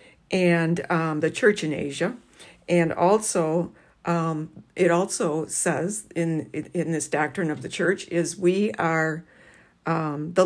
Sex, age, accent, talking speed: female, 60-79, American, 140 wpm